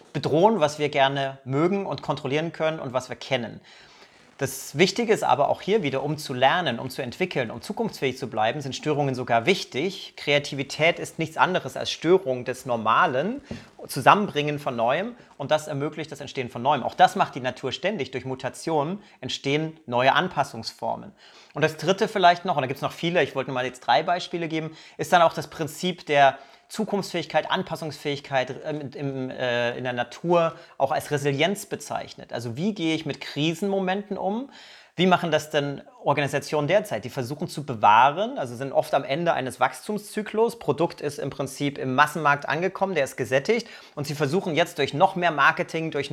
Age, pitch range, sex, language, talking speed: 30-49, 135-175 Hz, male, German, 180 wpm